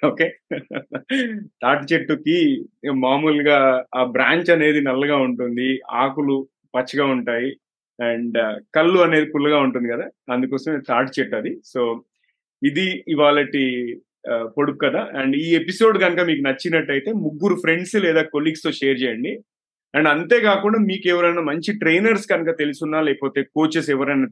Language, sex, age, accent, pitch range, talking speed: Telugu, male, 30-49, native, 145-190 Hz, 125 wpm